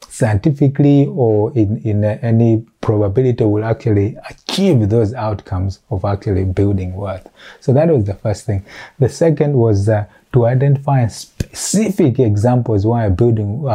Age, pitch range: 30-49, 105-130 Hz